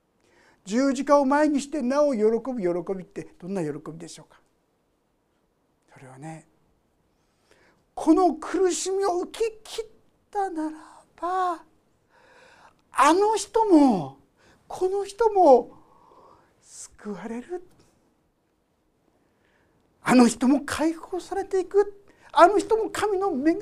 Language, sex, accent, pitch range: Japanese, male, native, 235-365 Hz